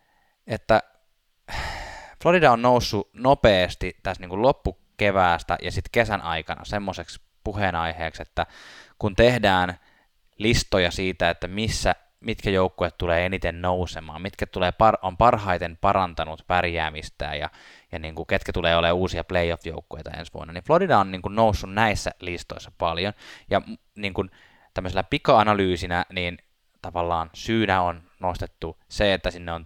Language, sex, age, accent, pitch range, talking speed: Finnish, male, 20-39, native, 85-105 Hz, 135 wpm